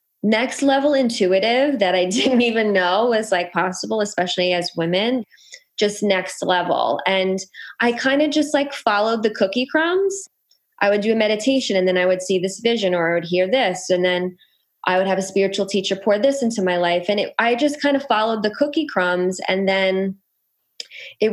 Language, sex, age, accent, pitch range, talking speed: English, female, 20-39, American, 180-215 Hz, 195 wpm